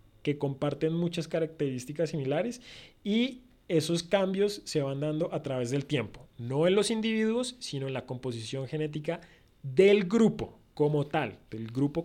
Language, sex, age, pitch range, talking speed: Spanish, male, 30-49, 135-175 Hz, 150 wpm